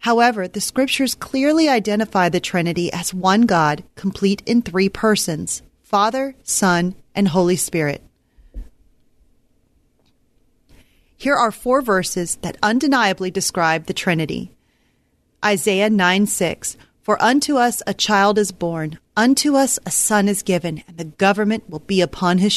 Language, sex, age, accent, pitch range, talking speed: English, female, 40-59, American, 180-225 Hz, 135 wpm